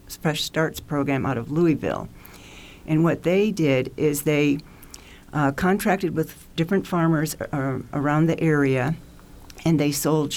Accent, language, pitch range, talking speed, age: American, English, 140-155 Hz, 135 wpm, 60-79